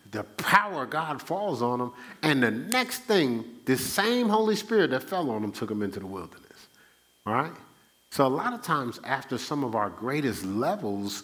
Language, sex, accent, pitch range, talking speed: English, male, American, 95-125 Hz, 200 wpm